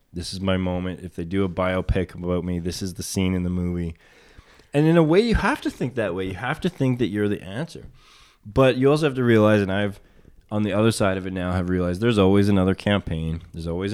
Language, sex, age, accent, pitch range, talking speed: English, male, 20-39, American, 90-110 Hz, 255 wpm